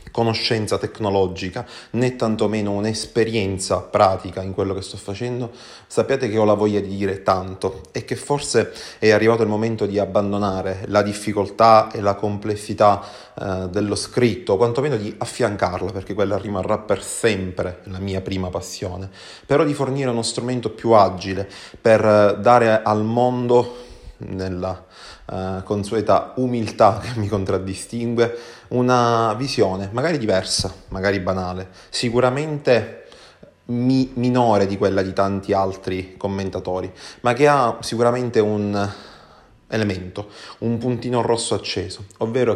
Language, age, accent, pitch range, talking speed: Italian, 30-49, native, 95-115 Hz, 125 wpm